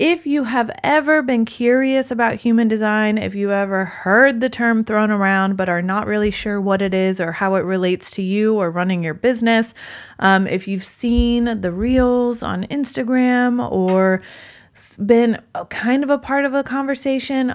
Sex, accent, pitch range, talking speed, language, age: female, American, 185-235 Hz, 180 wpm, English, 20-39